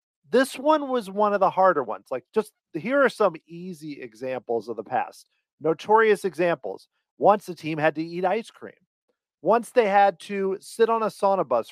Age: 40-59